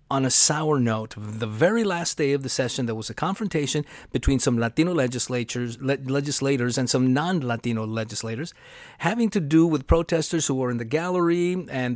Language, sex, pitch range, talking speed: English, male, 120-160 Hz, 170 wpm